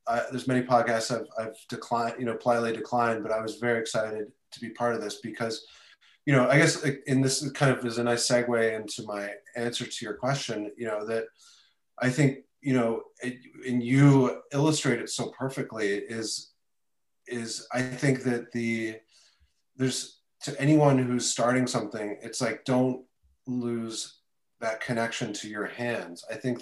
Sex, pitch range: male, 115-135 Hz